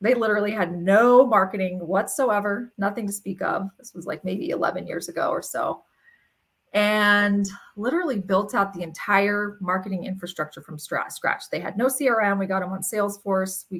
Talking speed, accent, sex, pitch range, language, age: 175 wpm, American, female, 175-205 Hz, English, 30-49